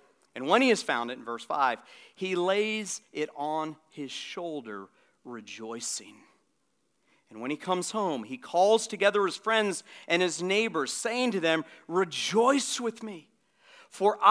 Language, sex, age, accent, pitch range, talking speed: English, male, 40-59, American, 150-225 Hz, 150 wpm